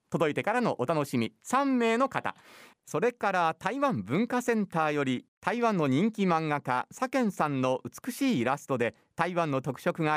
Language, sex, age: Japanese, male, 40-59